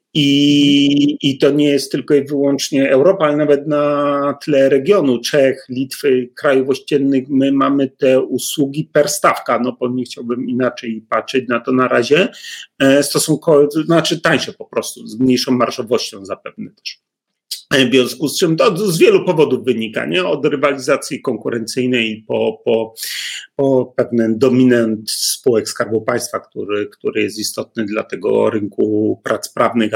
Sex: male